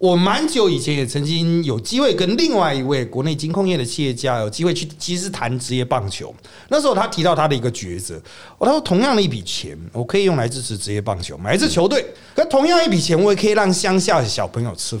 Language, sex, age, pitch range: Chinese, male, 30-49, 125-185 Hz